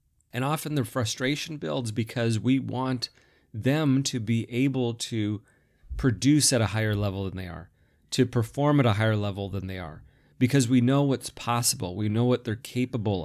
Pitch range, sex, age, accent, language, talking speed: 105-130 Hz, male, 30-49, American, English, 180 wpm